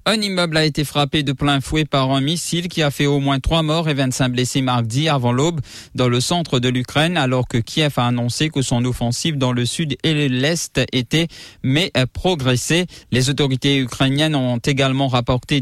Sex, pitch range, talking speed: male, 125-150 Hz, 195 wpm